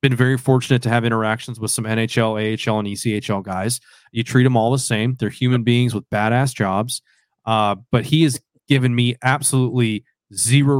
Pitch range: 110-130 Hz